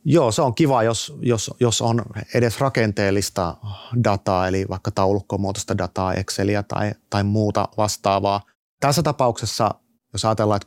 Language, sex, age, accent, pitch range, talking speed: Finnish, male, 30-49, native, 100-110 Hz, 140 wpm